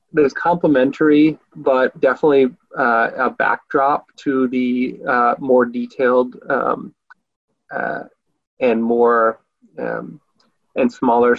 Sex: male